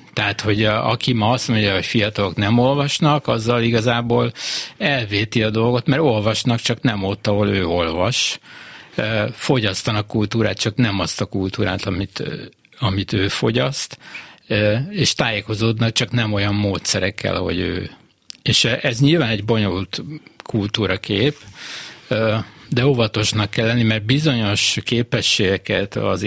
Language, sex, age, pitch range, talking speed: Hungarian, male, 60-79, 95-120 Hz, 130 wpm